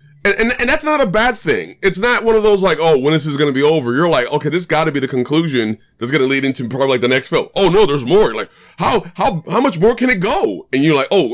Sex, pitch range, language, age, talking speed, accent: male, 125-195 Hz, English, 20-39, 320 wpm, American